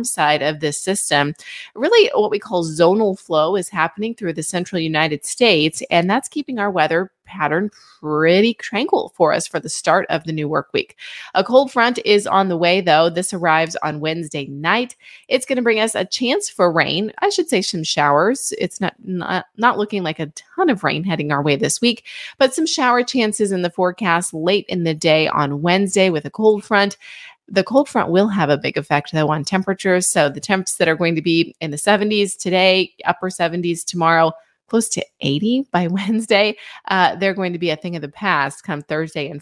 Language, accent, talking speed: English, American, 210 wpm